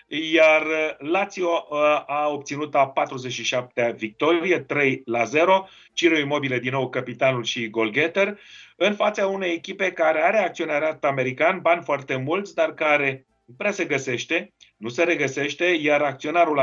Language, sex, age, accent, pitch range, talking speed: Romanian, male, 30-49, native, 130-165 Hz, 140 wpm